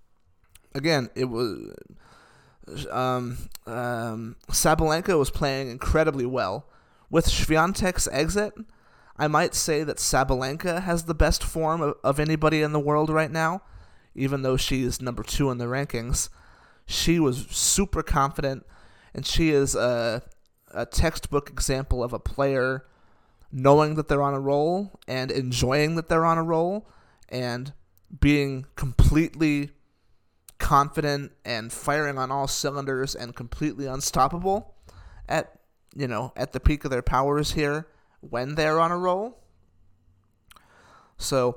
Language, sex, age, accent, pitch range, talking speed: English, male, 20-39, American, 120-155 Hz, 135 wpm